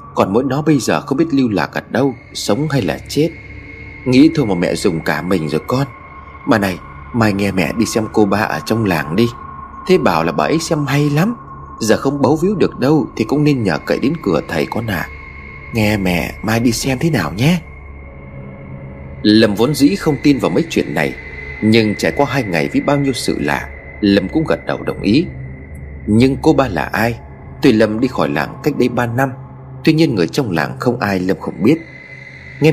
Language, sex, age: Vietnamese, male, 30-49